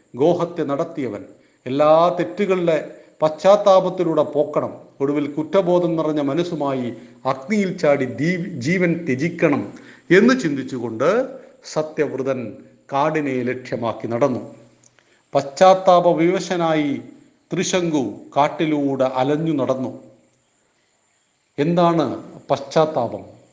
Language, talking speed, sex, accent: Hindi, 45 wpm, male, native